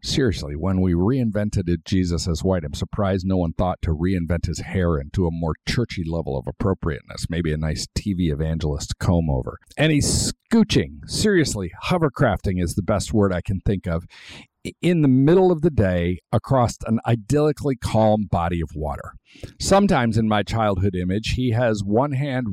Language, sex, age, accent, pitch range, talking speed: English, male, 50-69, American, 95-130 Hz, 175 wpm